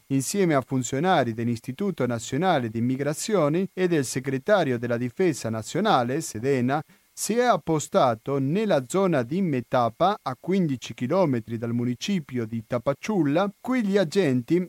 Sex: male